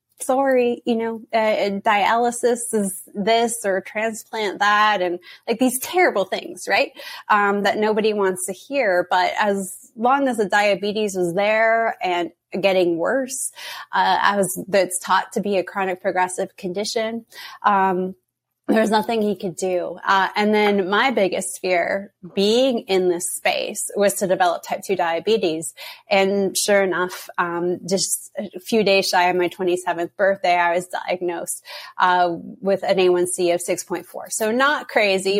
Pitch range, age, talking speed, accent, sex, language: 180-220 Hz, 20-39, 155 wpm, American, female, English